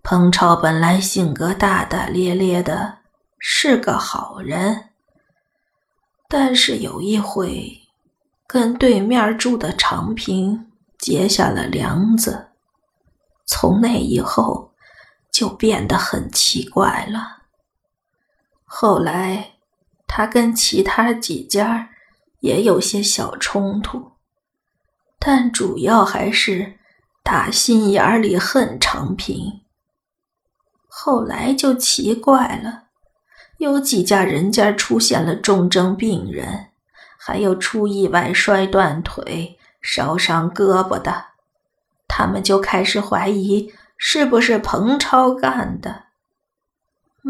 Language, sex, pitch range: Chinese, female, 190-230 Hz